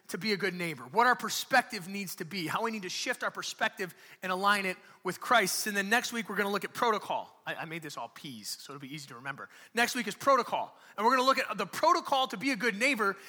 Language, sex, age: English, male, 30-49